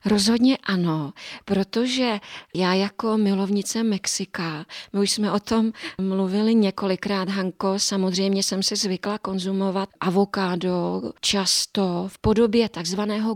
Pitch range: 185-210 Hz